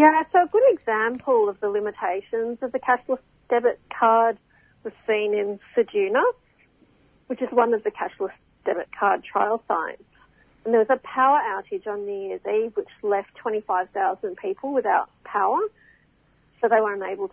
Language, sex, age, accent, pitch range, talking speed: English, female, 40-59, Australian, 205-290 Hz, 165 wpm